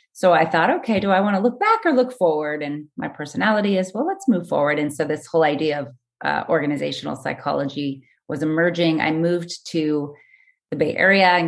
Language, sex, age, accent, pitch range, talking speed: English, female, 30-49, American, 145-175 Hz, 205 wpm